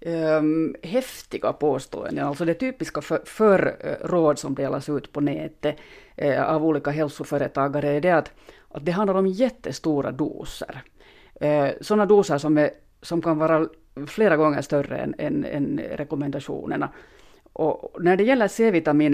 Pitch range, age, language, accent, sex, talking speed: 145-170 Hz, 30-49, Swedish, Finnish, female, 140 wpm